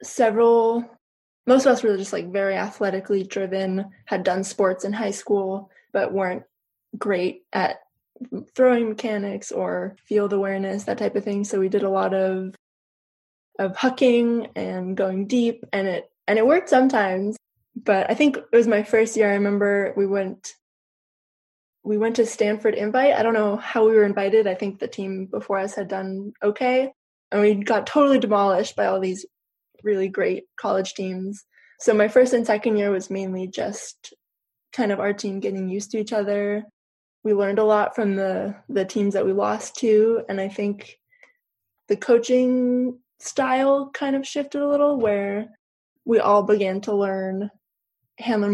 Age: 20-39